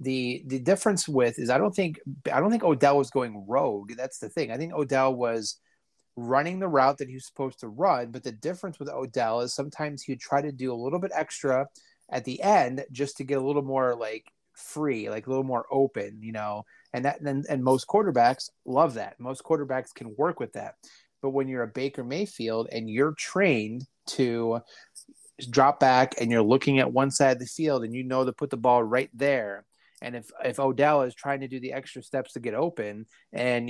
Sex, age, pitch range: male, 30-49, 120-140 Hz